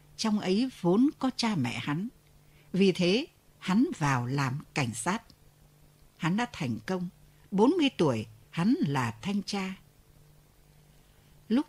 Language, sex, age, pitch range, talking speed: Vietnamese, female, 60-79, 145-230 Hz, 130 wpm